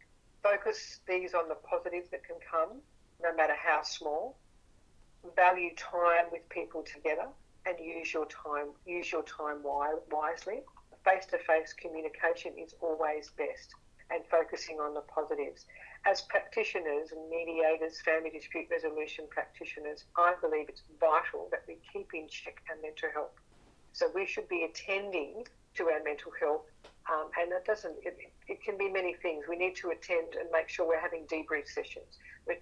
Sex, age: female, 50-69